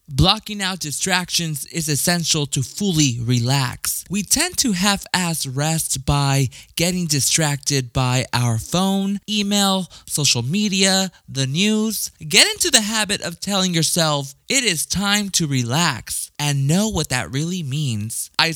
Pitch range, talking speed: 135-190 Hz, 140 wpm